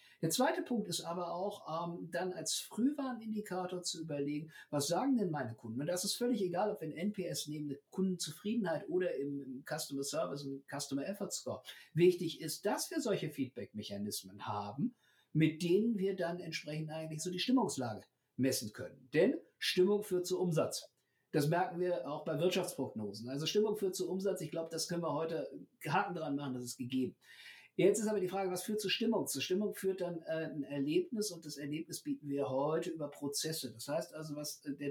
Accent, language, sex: German, German, male